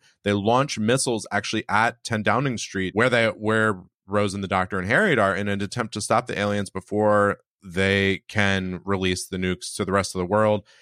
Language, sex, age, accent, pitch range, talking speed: English, male, 30-49, American, 95-120 Hz, 205 wpm